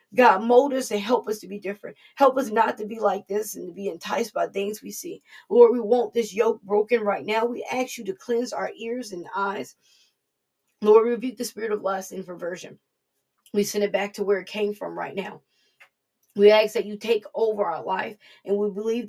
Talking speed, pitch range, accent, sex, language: 225 wpm, 180-220 Hz, American, female, English